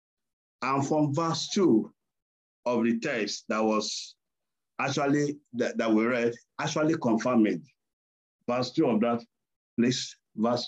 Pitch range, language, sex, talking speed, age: 120-155 Hz, English, male, 130 wpm, 50-69